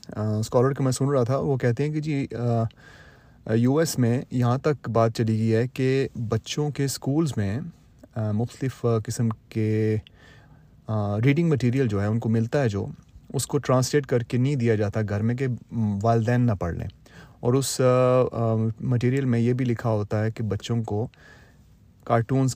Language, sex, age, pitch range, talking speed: Urdu, male, 30-49, 110-135 Hz, 175 wpm